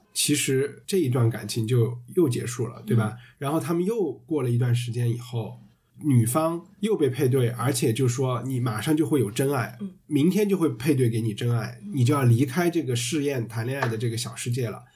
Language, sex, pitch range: Chinese, male, 120-155 Hz